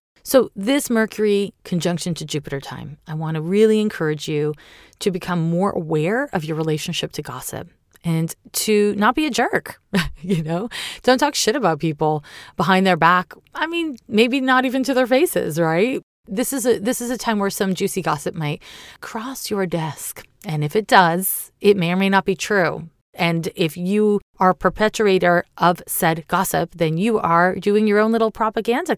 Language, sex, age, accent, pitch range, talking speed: English, female, 30-49, American, 165-220 Hz, 185 wpm